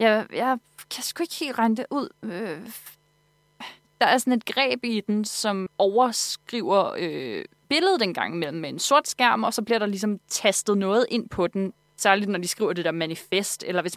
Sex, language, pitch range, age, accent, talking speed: female, Danish, 175-225 Hz, 20-39, native, 200 wpm